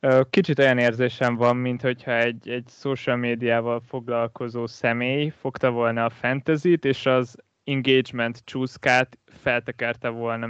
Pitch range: 115-130 Hz